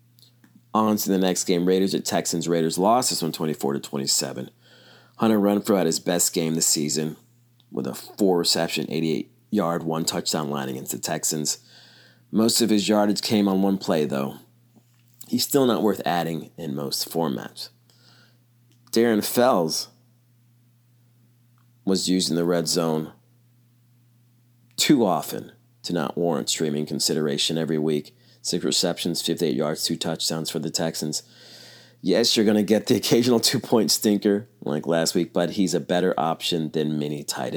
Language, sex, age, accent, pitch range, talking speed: English, male, 40-59, American, 80-120 Hz, 150 wpm